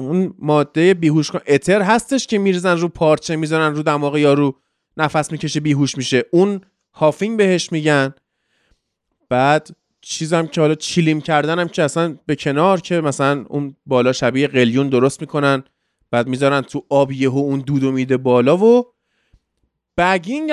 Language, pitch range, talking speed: Persian, 150-200 Hz, 160 wpm